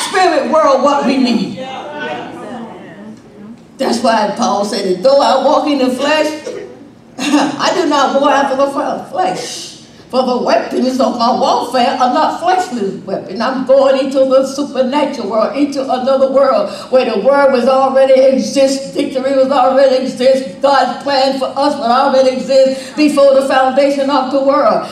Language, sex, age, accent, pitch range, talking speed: English, female, 60-79, American, 260-320 Hz, 155 wpm